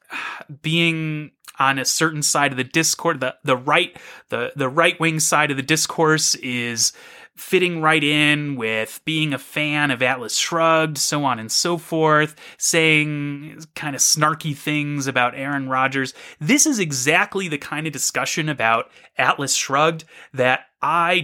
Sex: male